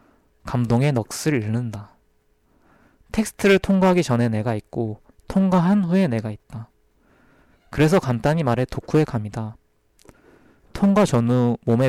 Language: Korean